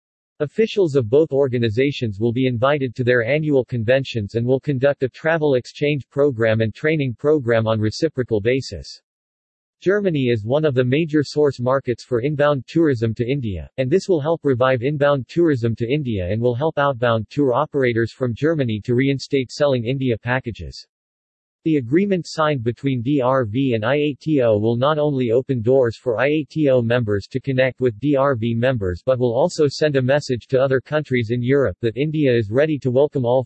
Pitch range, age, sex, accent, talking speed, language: 115-145 Hz, 50-69, male, American, 175 wpm, English